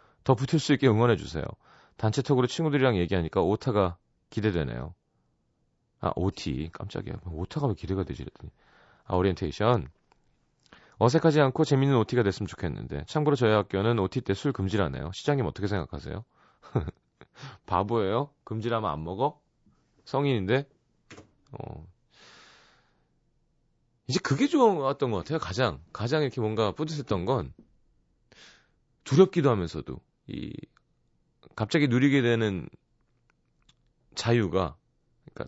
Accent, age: native, 30-49